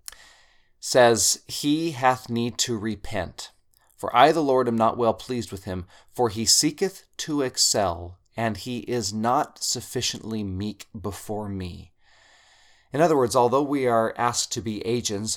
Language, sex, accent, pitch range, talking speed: English, male, American, 95-115 Hz, 150 wpm